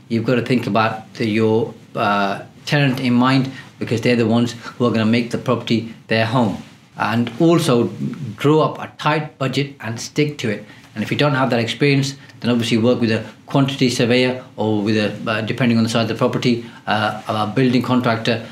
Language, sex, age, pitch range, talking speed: English, male, 40-59, 115-130 Hz, 200 wpm